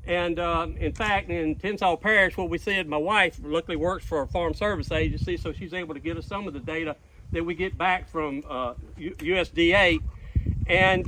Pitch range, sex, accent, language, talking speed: 165-195 Hz, male, American, English, 200 wpm